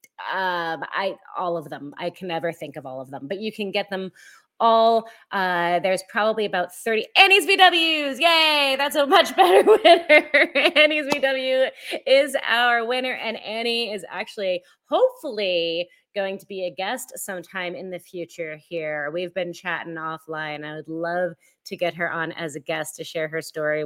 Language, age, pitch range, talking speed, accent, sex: English, 30-49, 180-255 Hz, 175 wpm, American, female